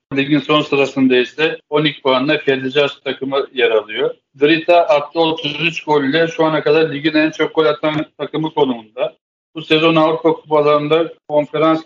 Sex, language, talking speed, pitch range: male, Turkish, 150 wpm, 140-155 Hz